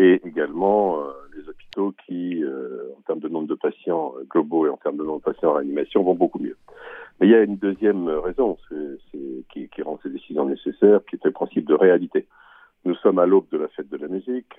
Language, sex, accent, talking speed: Italian, male, French, 235 wpm